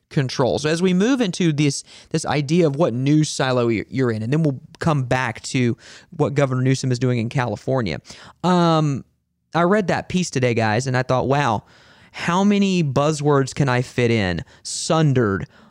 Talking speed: 180 wpm